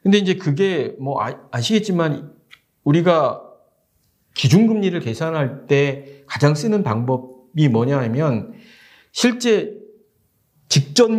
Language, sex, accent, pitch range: Korean, male, native, 140-210 Hz